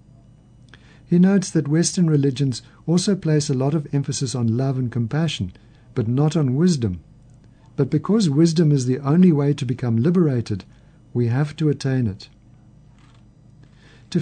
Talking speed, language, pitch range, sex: 150 wpm, English, 125-155 Hz, male